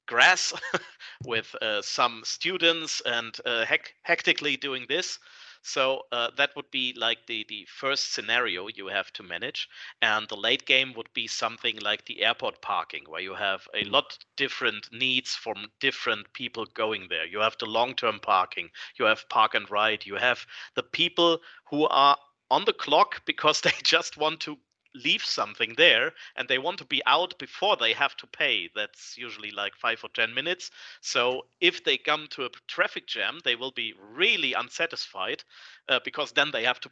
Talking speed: 180 wpm